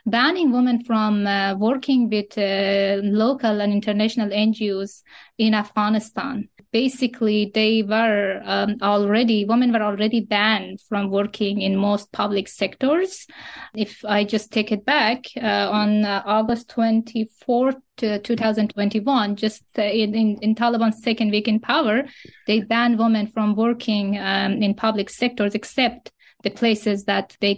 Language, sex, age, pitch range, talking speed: English, female, 20-39, 210-240 Hz, 145 wpm